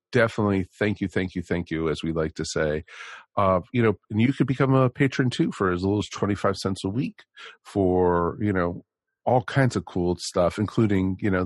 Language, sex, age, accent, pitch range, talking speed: English, male, 40-59, American, 90-115 Hz, 215 wpm